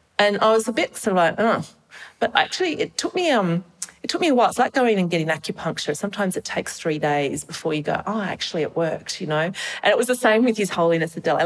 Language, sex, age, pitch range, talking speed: English, female, 40-59, 155-200 Hz, 260 wpm